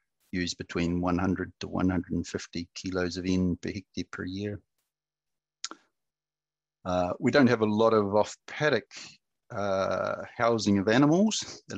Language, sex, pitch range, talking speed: English, male, 90-115 Hz, 130 wpm